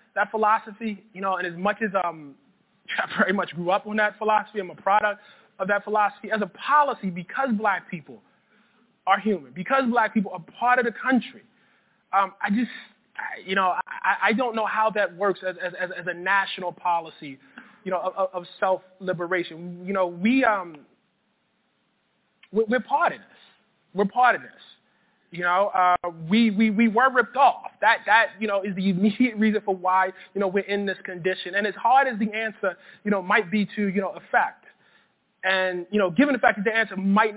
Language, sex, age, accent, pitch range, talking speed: English, male, 20-39, American, 185-220 Hz, 200 wpm